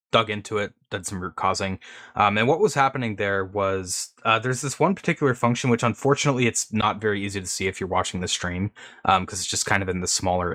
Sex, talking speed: male, 235 wpm